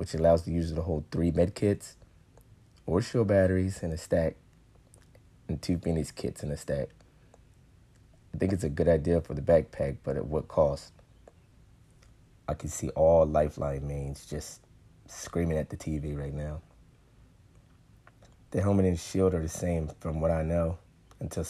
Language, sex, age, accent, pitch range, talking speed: English, male, 30-49, American, 80-95 Hz, 165 wpm